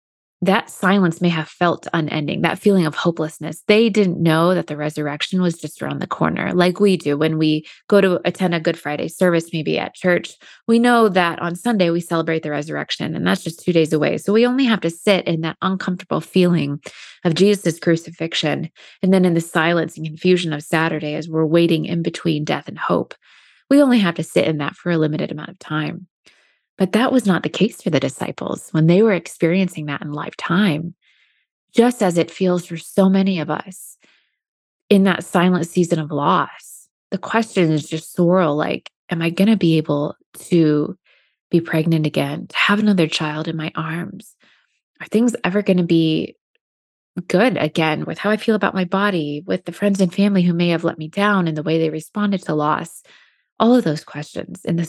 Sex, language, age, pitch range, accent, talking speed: female, English, 20-39, 160-190 Hz, American, 200 wpm